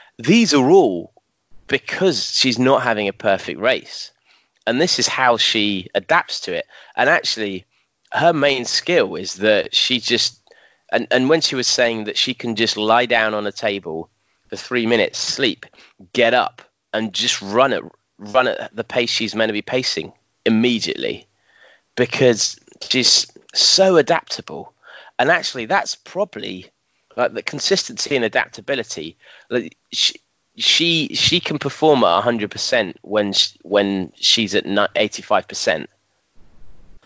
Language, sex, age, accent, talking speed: English, male, 30-49, British, 140 wpm